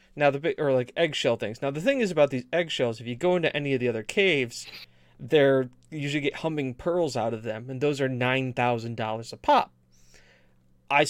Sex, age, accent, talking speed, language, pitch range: male, 30-49, American, 205 wpm, English, 125-165 Hz